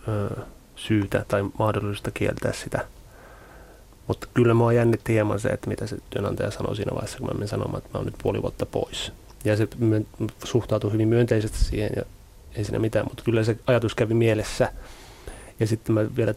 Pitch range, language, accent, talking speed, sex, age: 100-120 Hz, Finnish, native, 185 wpm, male, 30-49